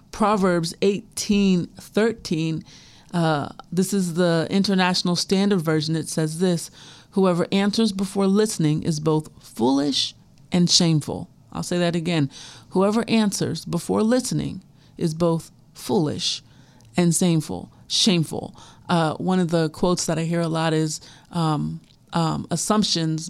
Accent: American